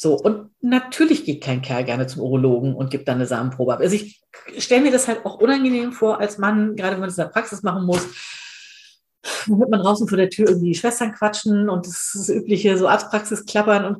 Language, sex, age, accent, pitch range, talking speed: German, female, 50-69, German, 185-225 Hz, 230 wpm